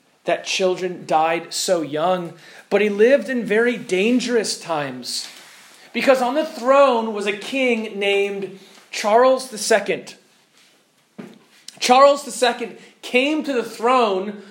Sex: male